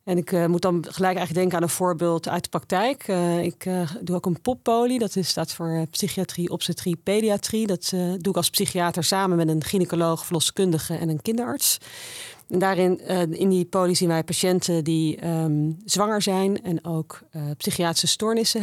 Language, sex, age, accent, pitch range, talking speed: Dutch, female, 40-59, Dutch, 165-195 Hz, 190 wpm